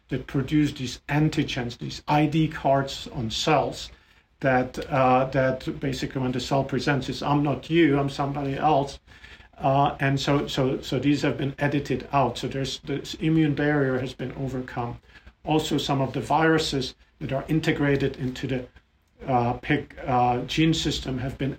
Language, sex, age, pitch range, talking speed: English, male, 50-69, 125-145 Hz, 165 wpm